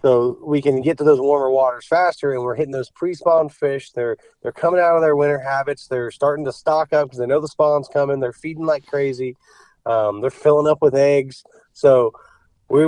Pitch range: 145-175 Hz